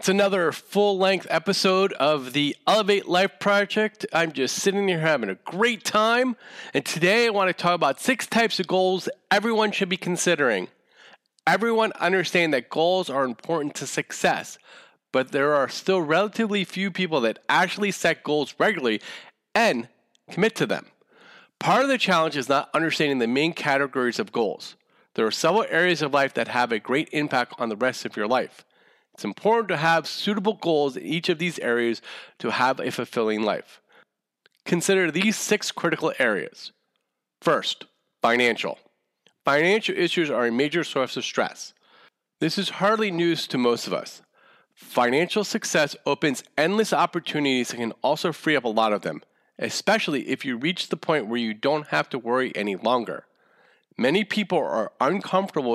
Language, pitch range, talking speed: English, 140-200 Hz, 170 wpm